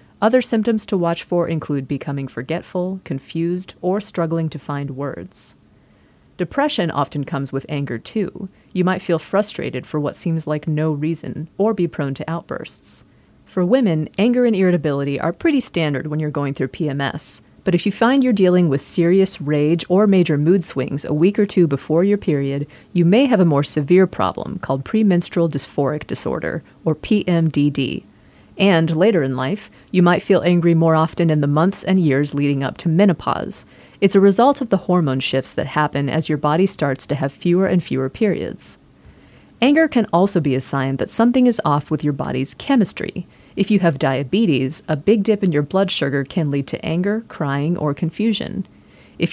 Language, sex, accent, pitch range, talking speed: English, female, American, 145-195 Hz, 185 wpm